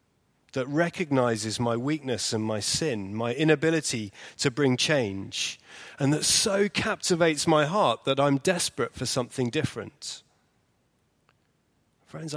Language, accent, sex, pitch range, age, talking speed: English, British, male, 110-145 Hz, 30-49, 120 wpm